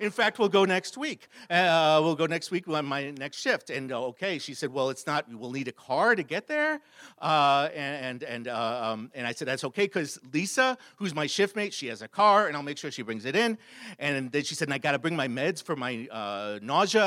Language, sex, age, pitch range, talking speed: English, male, 50-69, 140-205 Hz, 255 wpm